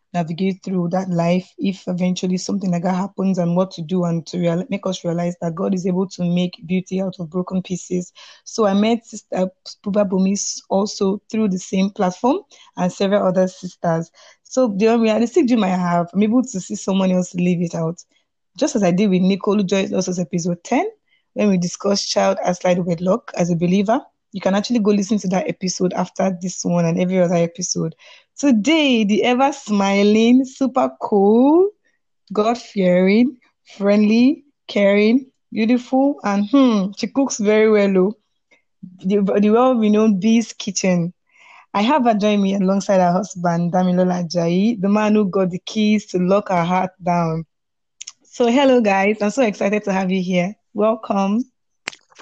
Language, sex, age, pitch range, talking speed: English, female, 20-39, 180-220 Hz, 170 wpm